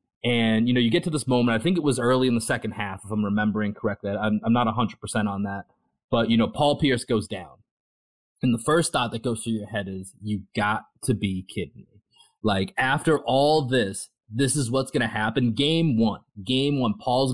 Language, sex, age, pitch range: English, male, 30-49, 110-130 Hz